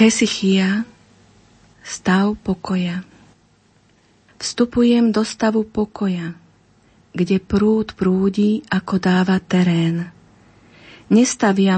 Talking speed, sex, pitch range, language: 70 wpm, female, 175-205 Hz, Slovak